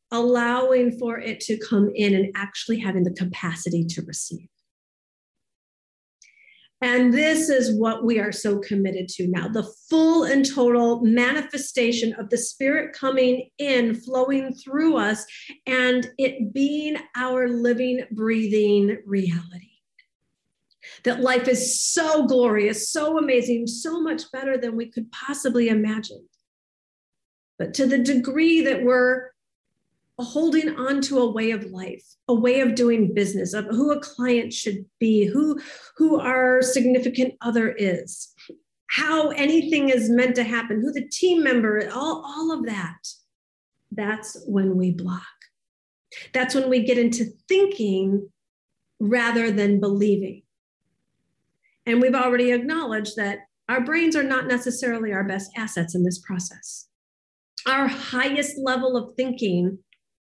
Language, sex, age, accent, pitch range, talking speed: English, female, 50-69, American, 210-265 Hz, 135 wpm